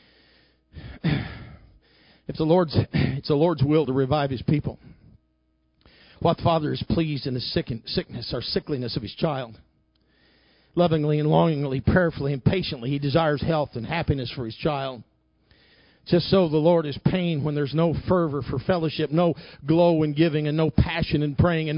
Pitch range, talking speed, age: 130-155 Hz, 165 wpm, 50-69